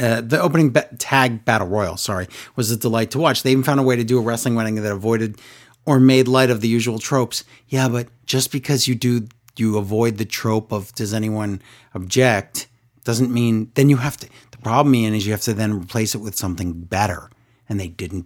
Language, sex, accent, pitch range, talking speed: English, male, American, 110-135 Hz, 220 wpm